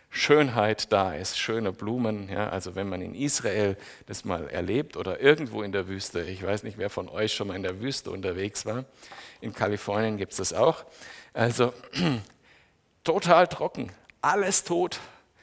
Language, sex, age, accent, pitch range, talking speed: German, male, 60-79, German, 105-145 Hz, 165 wpm